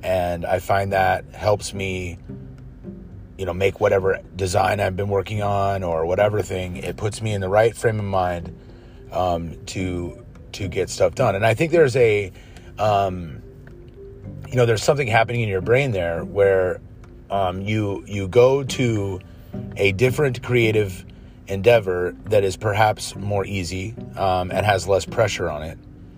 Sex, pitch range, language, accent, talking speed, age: male, 95-115 Hz, English, American, 160 wpm, 30-49